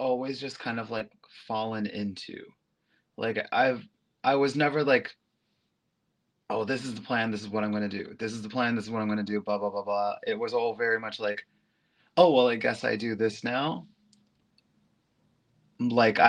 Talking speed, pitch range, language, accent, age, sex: 205 wpm, 105-120 Hz, English, American, 20-39, male